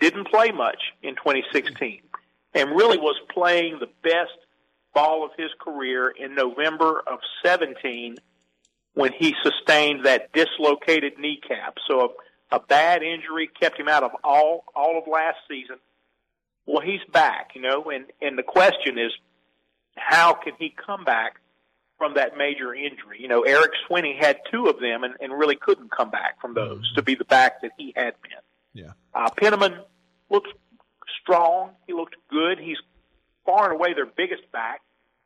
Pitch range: 120-165 Hz